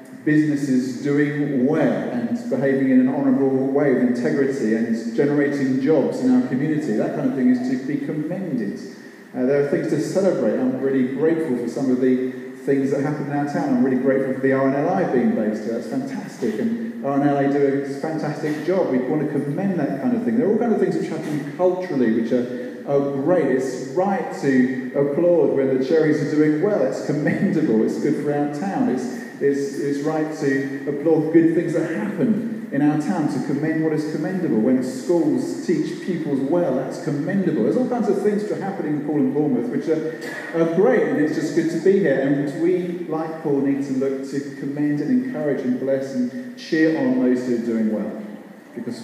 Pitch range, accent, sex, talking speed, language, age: 135-190 Hz, British, male, 205 wpm, English, 40-59